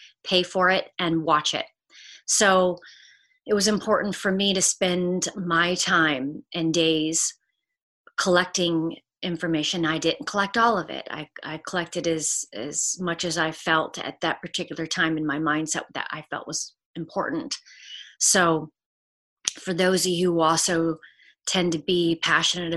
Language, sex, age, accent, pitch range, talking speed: English, female, 30-49, American, 160-200 Hz, 155 wpm